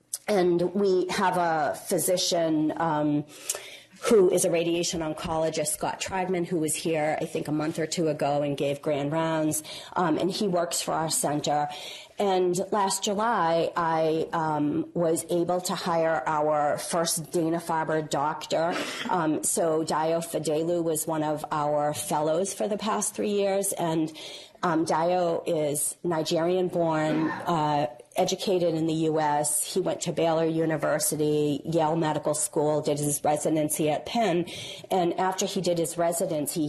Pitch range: 150-175 Hz